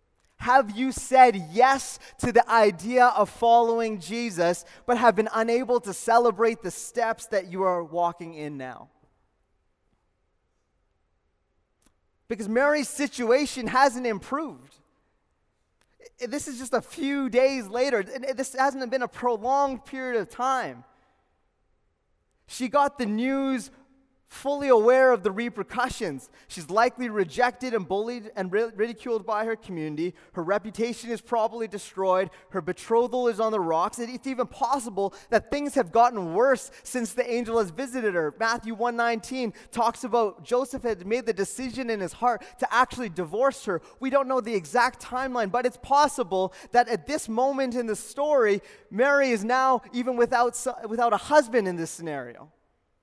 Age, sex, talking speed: 20-39, male, 150 wpm